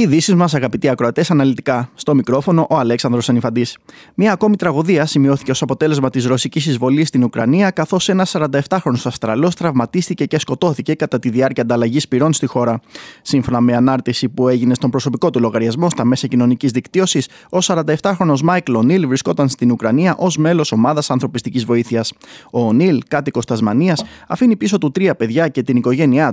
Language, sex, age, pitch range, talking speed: Greek, male, 20-39, 120-165 Hz, 160 wpm